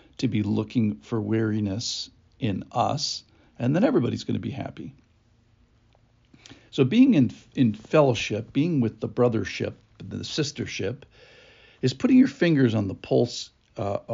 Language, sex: English, male